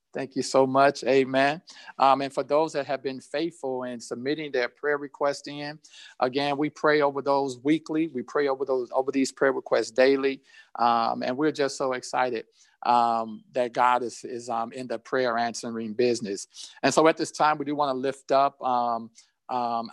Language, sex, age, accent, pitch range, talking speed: English, male, 50-69, American, 125-145 Hz, 195 wpm